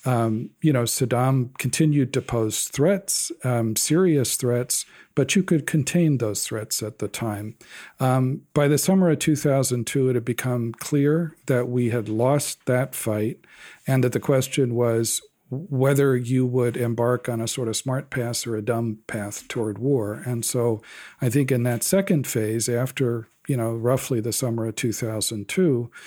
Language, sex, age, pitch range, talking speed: English, male, 50-69, 115-135 Hz, 170 wpm